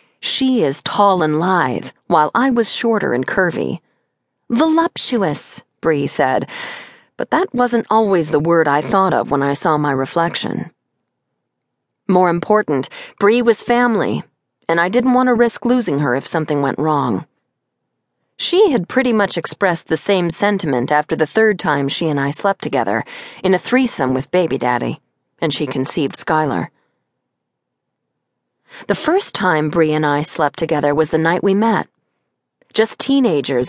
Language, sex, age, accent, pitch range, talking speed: English, female, 40-59, American, 150-225 Hz, 155 wpm